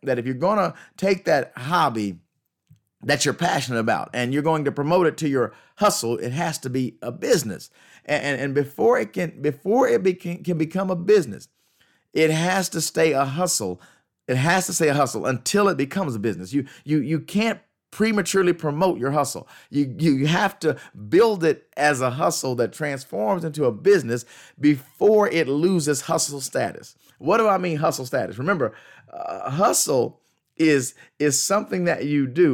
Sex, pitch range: male, 140-190 Hz